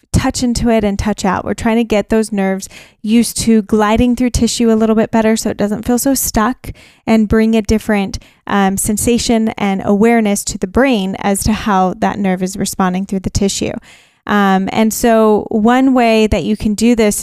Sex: female